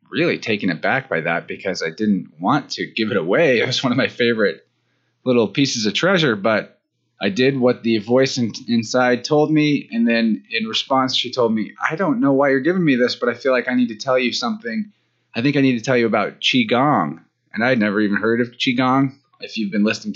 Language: English